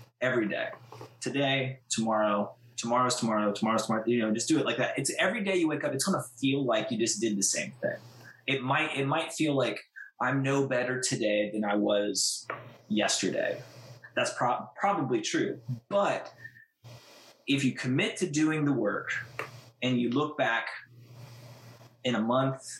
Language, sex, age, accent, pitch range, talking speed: English, male, 20-39, American, 115-140 Hz, 170 wpm